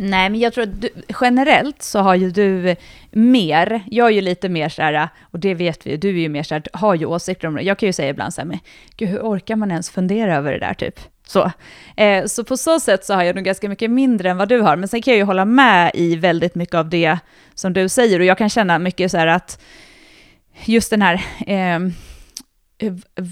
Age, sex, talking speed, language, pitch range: 30-49, female, 245 wpm, Swedish, 175-215 Hz